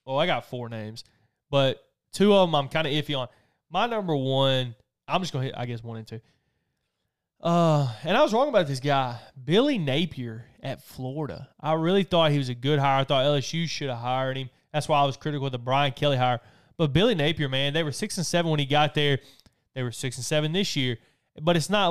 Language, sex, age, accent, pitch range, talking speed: English, male, 20-39, American, 125-150 Hz, 235 wpm